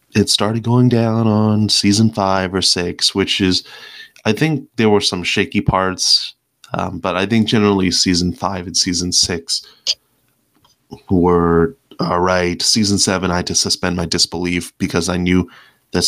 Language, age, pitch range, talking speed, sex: English, 20-39, 90-100 Hz, 160 wpm, male